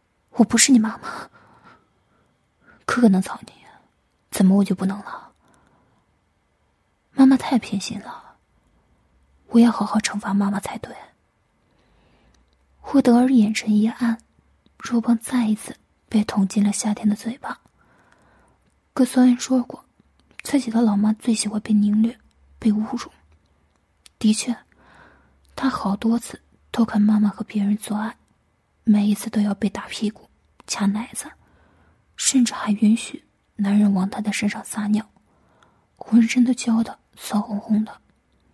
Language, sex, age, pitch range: Chinese, female, 20-39, 210-240 Hz